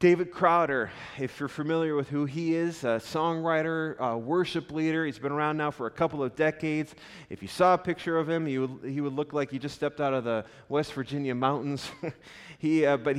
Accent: American